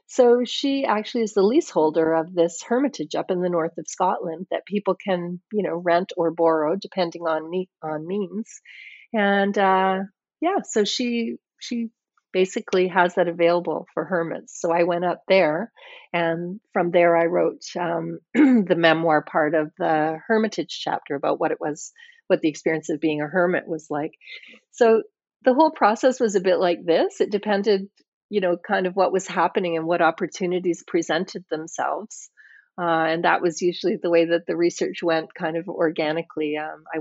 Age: 40-59